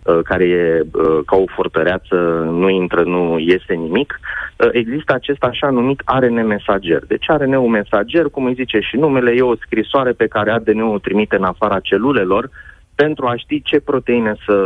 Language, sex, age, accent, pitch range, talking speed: Romanian, male, 30-49, native, 100-130 Hz, 180 wpm